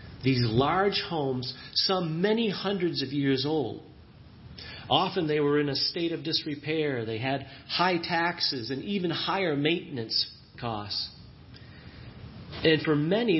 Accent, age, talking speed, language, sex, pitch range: American, 40-59, 130 wpm, English, male, 130-170 Hz